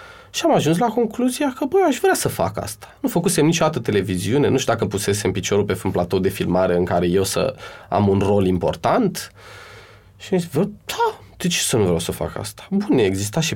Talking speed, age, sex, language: 225 wpm, 20-39, male, Romanian